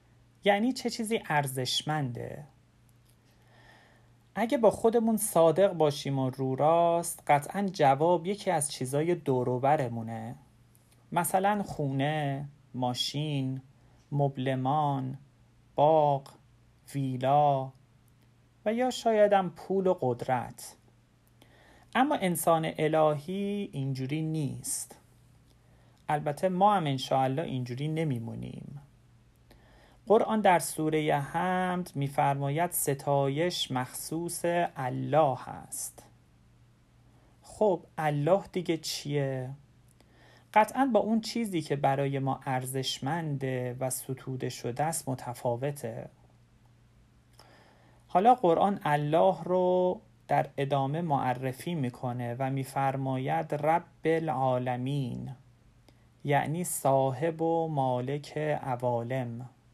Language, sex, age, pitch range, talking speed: Persian, male, 40-59, 125-165 Hz, 85 wpm